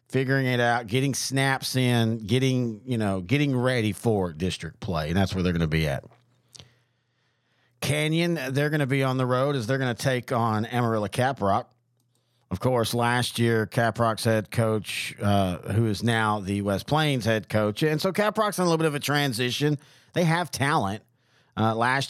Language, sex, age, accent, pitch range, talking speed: English, male, 40-59, American, 110-130 Hz, 185 wpm